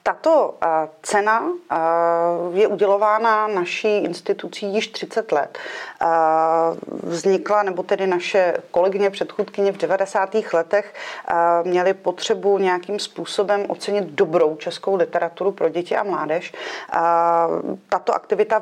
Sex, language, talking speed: female, Czech, 105 wpm